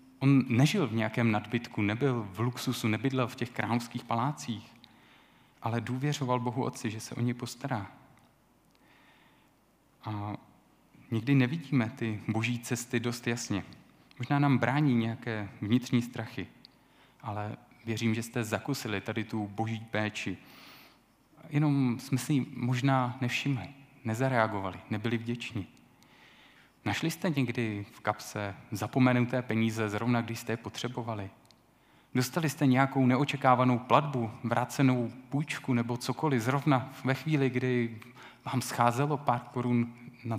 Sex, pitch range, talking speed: male, 115-130 Hz, 120 wpm